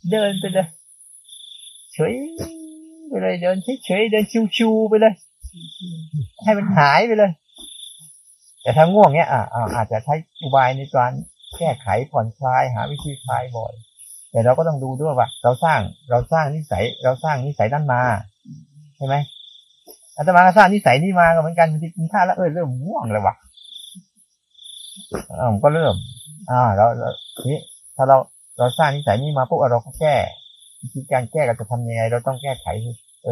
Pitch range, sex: 115-165 Hz, male